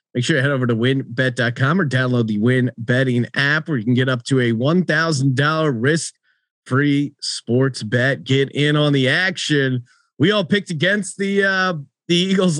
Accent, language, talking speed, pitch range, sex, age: American, English, 180 wpm, 135-170 Hz, male, 30-49